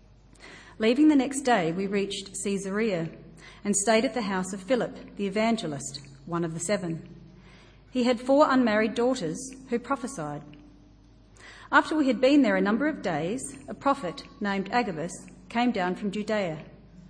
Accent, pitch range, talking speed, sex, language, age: Australian, 175-245 Hz, 155 wpm, female, English, 40-59